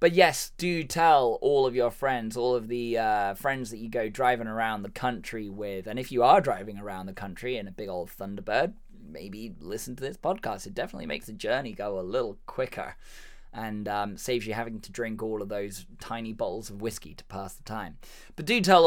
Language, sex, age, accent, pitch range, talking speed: English, male, 10-29, British, 105-135 Hz, 220 wpm